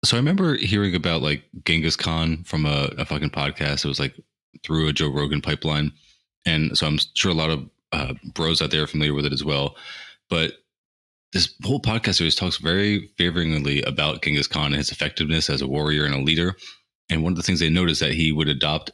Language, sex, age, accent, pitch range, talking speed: English, male, 30-49, American, 75-90 Hz, 220 wpm